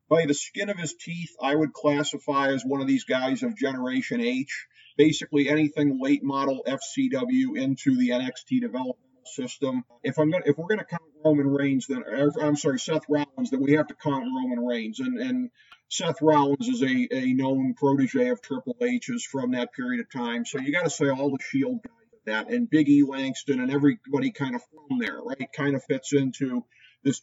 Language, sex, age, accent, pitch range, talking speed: English, male, 50-69, American, 135-220 Hz, 205 wpm